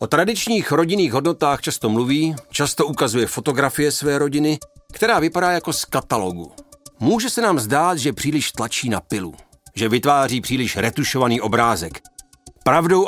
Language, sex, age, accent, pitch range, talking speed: Czech, male, 40-59, native, 115-160 Hz, 140 wpm